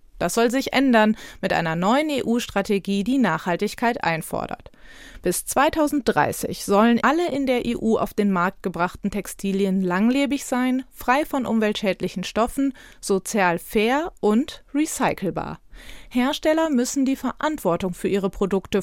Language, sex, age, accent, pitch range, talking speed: German, female, 30-49, German, 190-255 Hz, 125 wpm